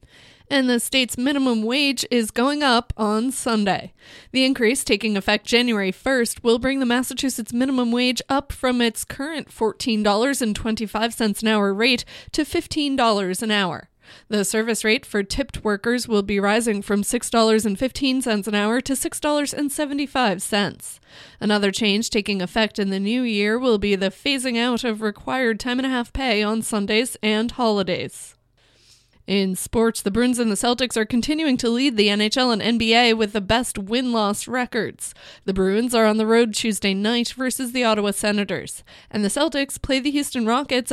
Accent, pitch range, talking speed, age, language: American, 210-250 Hz, 165 wpm, 20-39, English